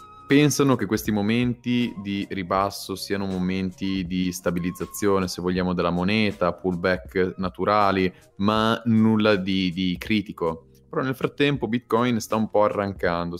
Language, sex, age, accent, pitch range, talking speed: Italian, male, 20-39, native, 90-105 Hz, 130 wpm